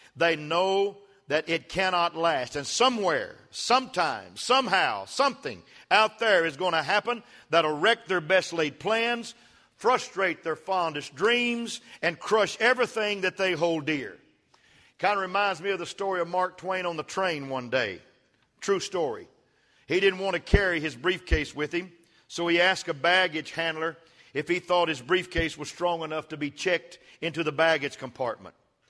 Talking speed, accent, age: 170 wpm, American, 50-69